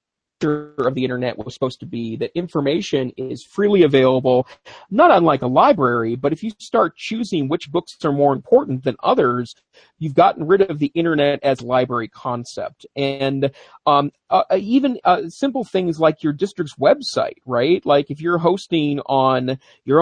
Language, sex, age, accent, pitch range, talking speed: English, male, 40-59, American, 130-175 Hz, 165 wpm